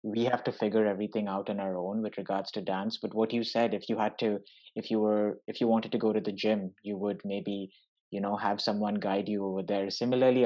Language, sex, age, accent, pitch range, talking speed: English, male, 20-39, Indian, 100-115 Hz, 250 wpm